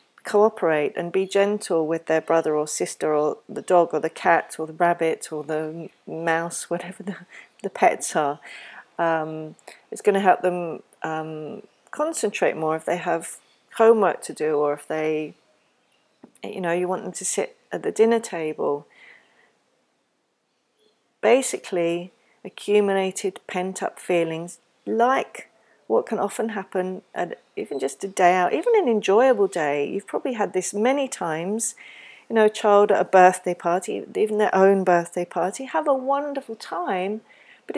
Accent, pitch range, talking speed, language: British, 170-220 Hz, 155 wpm, English